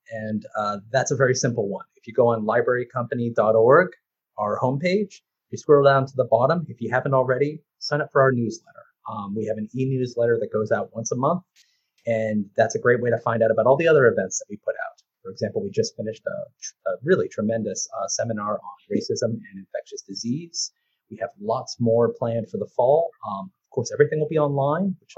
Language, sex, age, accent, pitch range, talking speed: English, male, 30-49, American, 115-150 Hz, 210 wpm